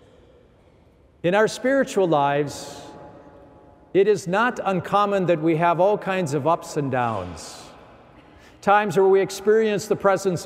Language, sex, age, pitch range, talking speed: English, male, 50-69, 150-210 Hz, 130 wpm